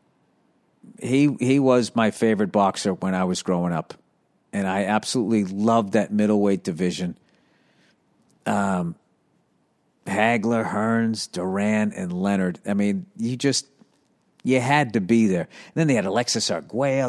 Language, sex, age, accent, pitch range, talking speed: English, male, 50-69, American, 115-150 Hz, 135 wpm